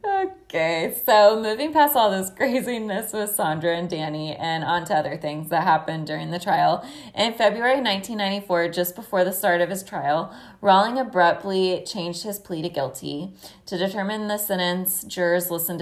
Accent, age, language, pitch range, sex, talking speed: American, 20-39, English, 155-195 Hz, female, 165 wpm